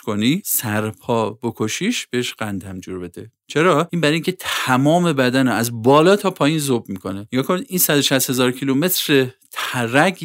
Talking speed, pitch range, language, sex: 150 wpm, 115-165 Hz, Persian, male